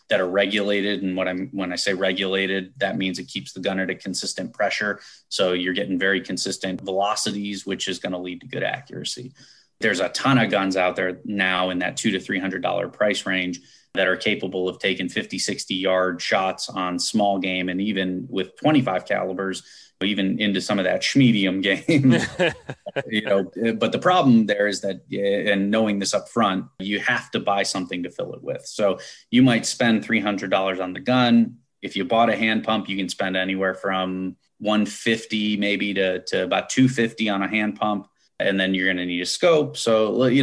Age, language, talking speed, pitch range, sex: 30-49, English, 205 wpm, 95-110 Hz, male